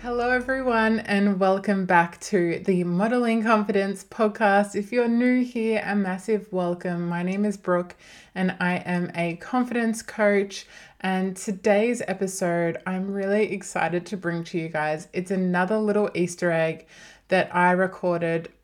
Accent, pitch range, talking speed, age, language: Australian, 170-200 Hz, 150 wpm, 20-39, English